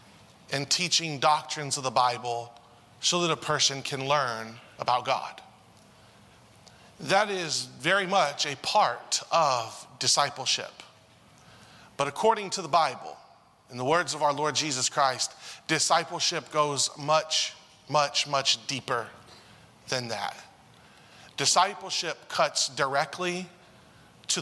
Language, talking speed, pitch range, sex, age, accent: English, 115 wpm, 130-165 Hz, male, 30-49, American